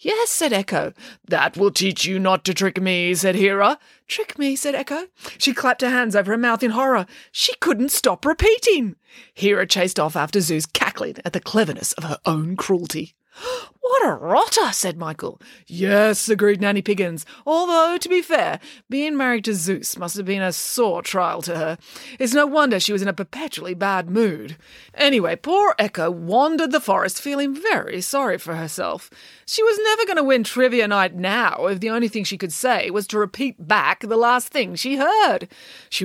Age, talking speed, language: 30-49, 190 wpm, English